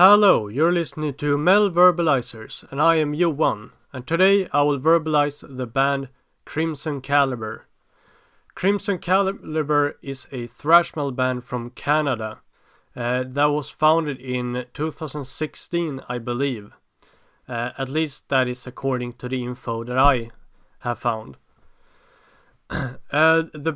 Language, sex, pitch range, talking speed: English, male, 125-155 Hz, 130 wpm